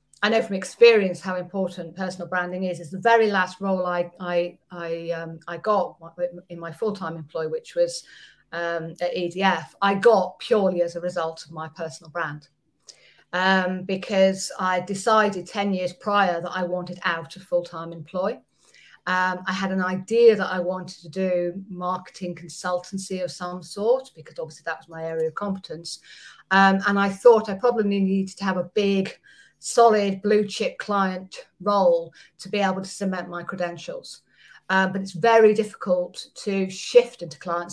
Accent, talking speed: British, 170 wpm